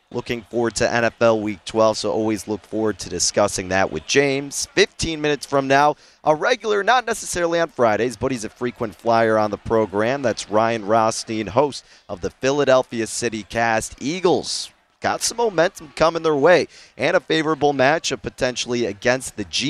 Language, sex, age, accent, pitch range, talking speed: English, male, 30-49, American, 110-140 Hz, 175 wpm